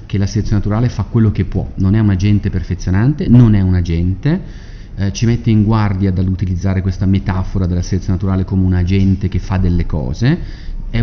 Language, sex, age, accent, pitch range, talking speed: Italian, male, 30-49, native, 95-115 Hz, 195 wpm